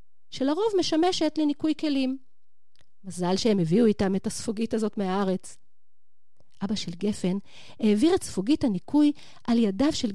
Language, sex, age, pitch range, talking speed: Hebrew, female, 40-59, 205-310 Hz, 130 wpm